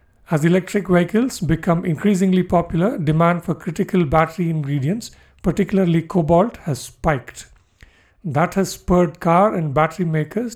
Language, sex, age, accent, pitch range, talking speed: English, male, 50-69, Indian, 155-185 Hz, 125 wpm